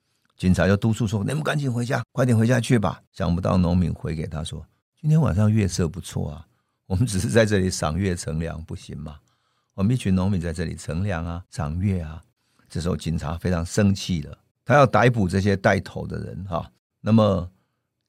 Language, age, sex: Chinese, 50-69, male